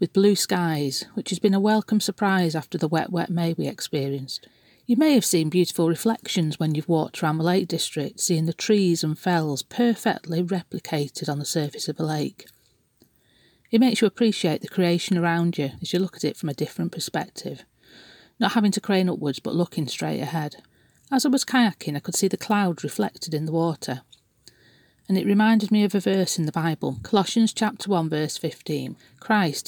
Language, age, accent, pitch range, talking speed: English, 40-59, British, 155-200 Hz, 195 wpm